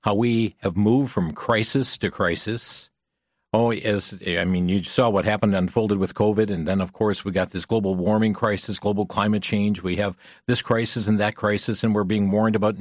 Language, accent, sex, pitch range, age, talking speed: English, American, male, 105-140 Hz, 50-69, 205 wpm